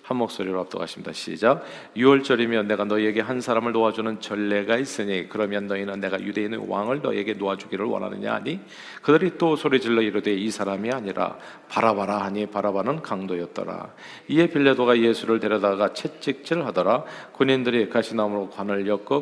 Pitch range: 105-125 Hz